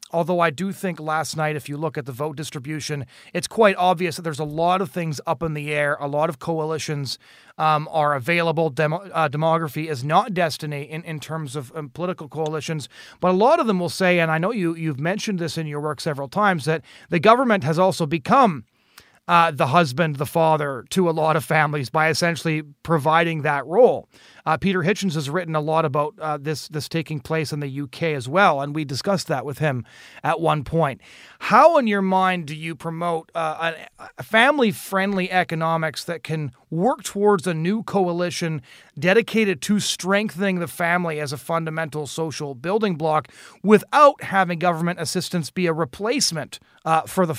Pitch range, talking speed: 150-180 Hz, 195 wpm